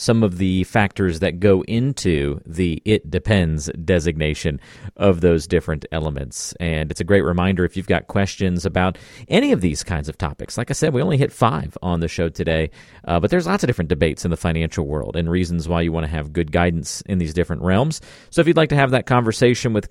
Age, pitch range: 40-59, 85-110 Hz